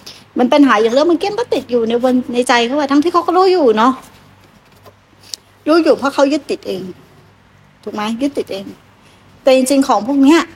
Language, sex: Thai, female